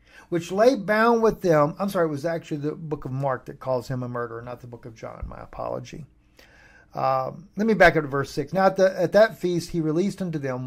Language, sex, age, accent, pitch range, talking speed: English, male, 50-69, American, 130-175 Hz, 240 wpm